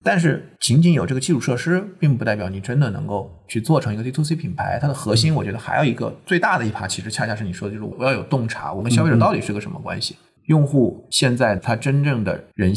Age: 20-39